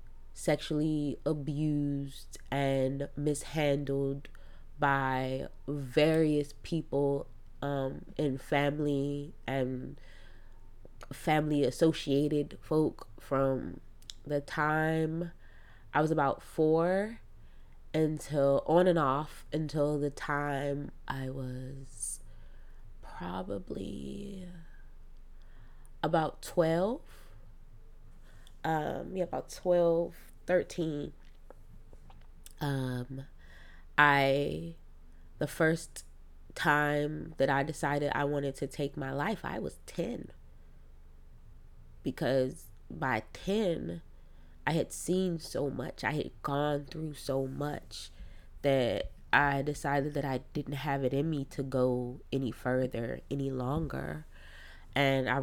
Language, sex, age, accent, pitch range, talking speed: English, female, 20-39, American, 115-150 Hz, 95 wpm